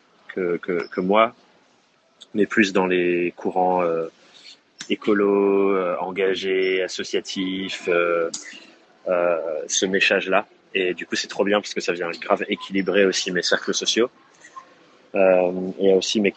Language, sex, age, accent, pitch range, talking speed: French, male, 30-49, French, 90-105 Hz, 145 wpm